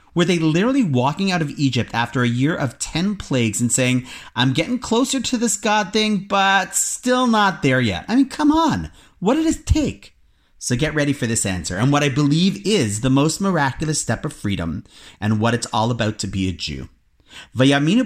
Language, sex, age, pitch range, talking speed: English, male, 30-49, 110-175 Hz, 205 wpm